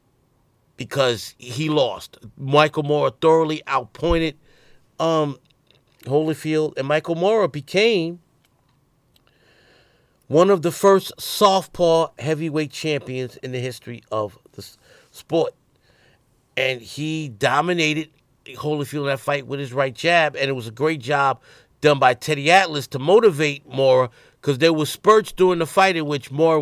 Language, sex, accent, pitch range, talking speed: English, male, American, 130-155 Hz, 135 wpm